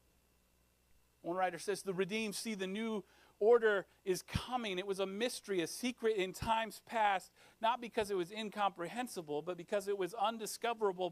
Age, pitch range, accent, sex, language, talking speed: 40-59, 190-245 Hz, American, male, English, 160 wpm